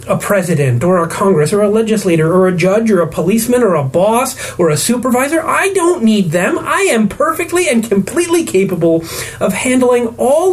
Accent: American